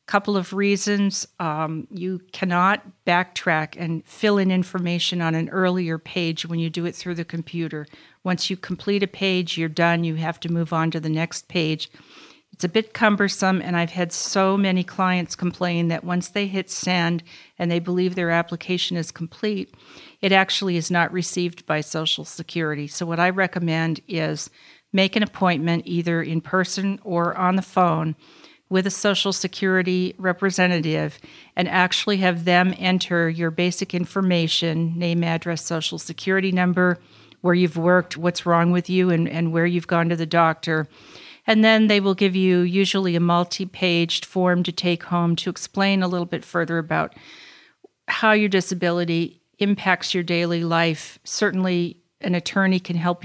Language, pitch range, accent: English, 165-185 Hz, American